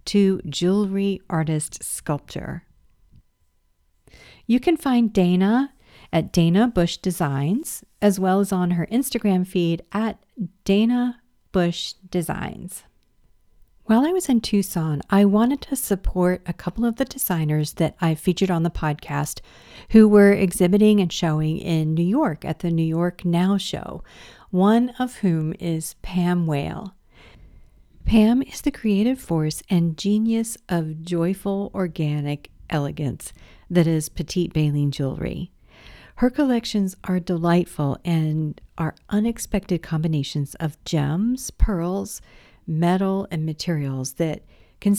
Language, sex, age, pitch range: English, female, 50-69, 160-205 Hz